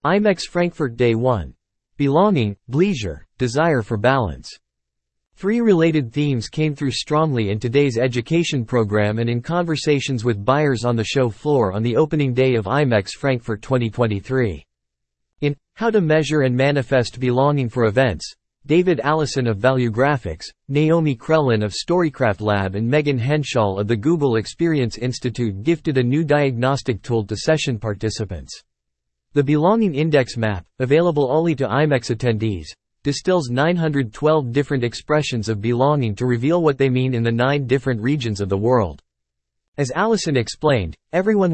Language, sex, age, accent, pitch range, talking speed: English, male, 40-59, American, 115-150 Hz, 150 wpm